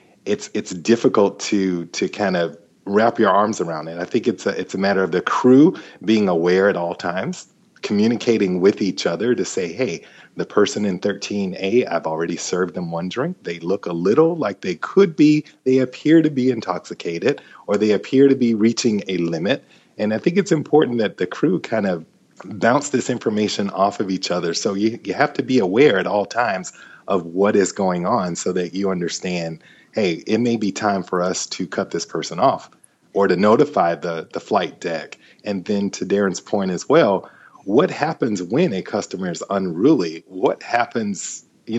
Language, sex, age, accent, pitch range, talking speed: English, male, 30-49, American, 90-130 Hz, 195 wpm